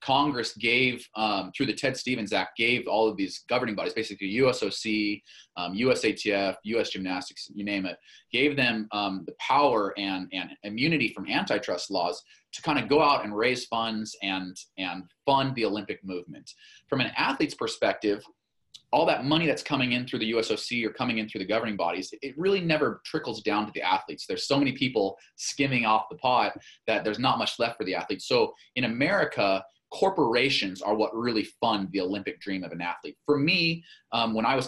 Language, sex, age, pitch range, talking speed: English, male, 30-49, 100-135 Hz, 195 wpm